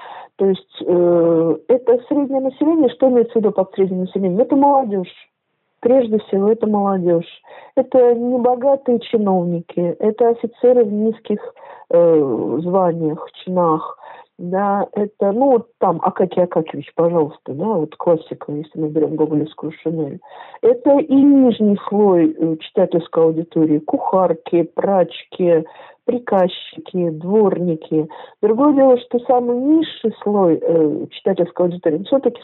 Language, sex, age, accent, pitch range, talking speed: Russian, female, 50-69, native, 170-235 Hz, 120 wpm